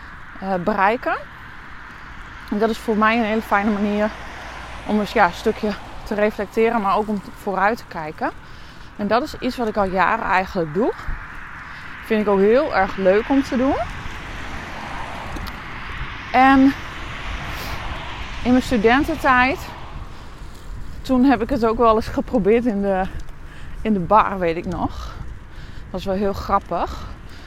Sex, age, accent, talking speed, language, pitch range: female, 20-39, Dutch, 140 wpm, Dutch, 190-230 Hz